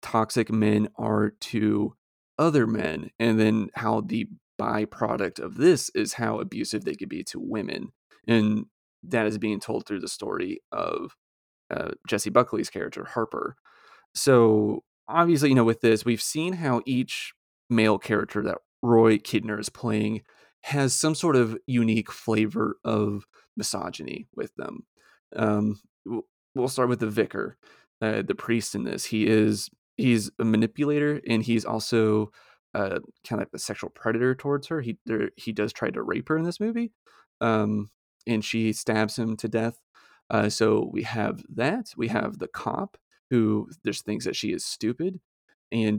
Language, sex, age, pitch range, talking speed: English, male, 30-49, 110-125 Hz, 165 wpm